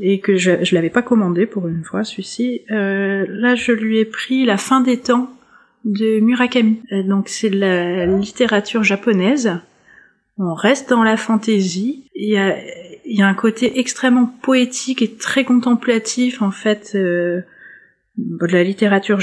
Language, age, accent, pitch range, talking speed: French, 30-49, French, 195-245 Hz, 175 wpm